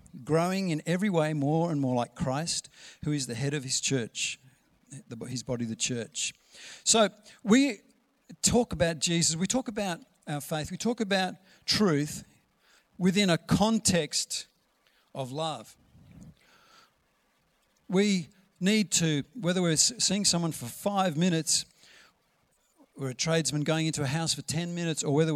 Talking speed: 145 wpm